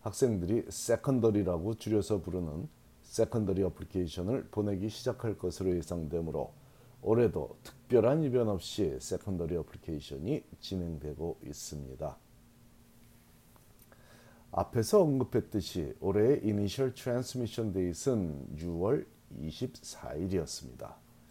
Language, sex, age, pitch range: Korean, male, 40-59, 85-115 Hz